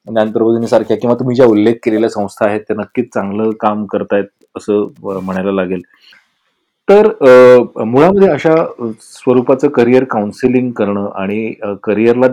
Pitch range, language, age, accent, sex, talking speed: 110-155 Hz, Marathi, 30-49, native, male, 130 wpm